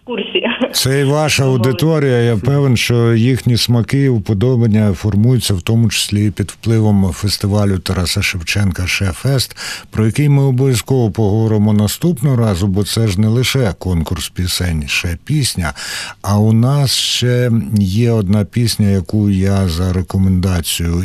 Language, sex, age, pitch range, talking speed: Ukrainian, male, 60-79, 95-125 Hz, 135 wpm